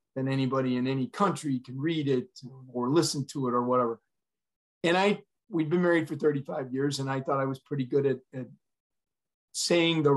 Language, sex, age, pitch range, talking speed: English, male, 40-59, 135-160 Hz, 195 wpm